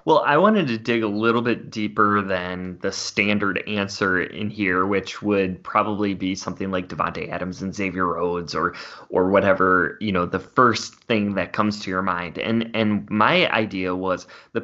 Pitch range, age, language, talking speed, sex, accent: 95-110 Hz, 20-39, English, 185 wpm, male, American